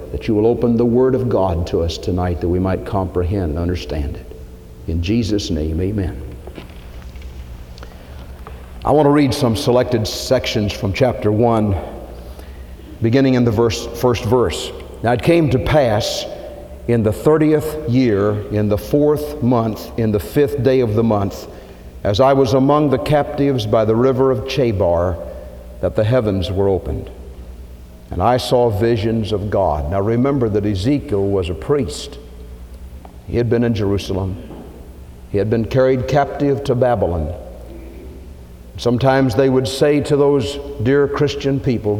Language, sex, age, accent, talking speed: English, male, 50-69, American, 155 wpm